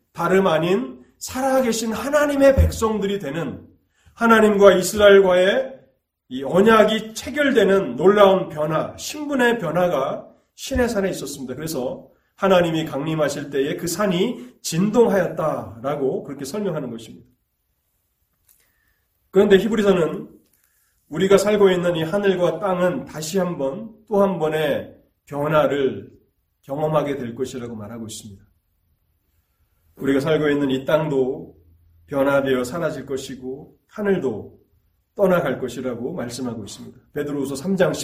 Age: 30-49